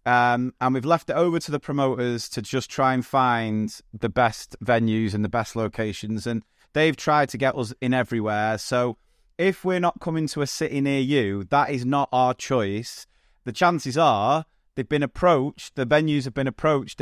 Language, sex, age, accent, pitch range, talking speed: English, male, 30-49, British, 115-140 Hz, 195 wpm